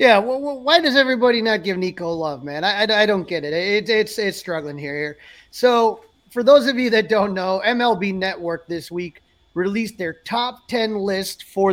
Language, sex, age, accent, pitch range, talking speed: English, male, 30-49, American, 175-225 Hz, 205 wpm